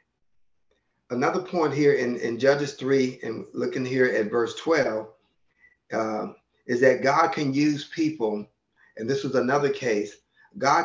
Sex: male